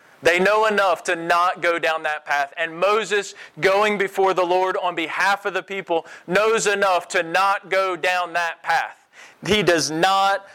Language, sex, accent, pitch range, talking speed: English, male, American, 170-205 Hz, 175 wpm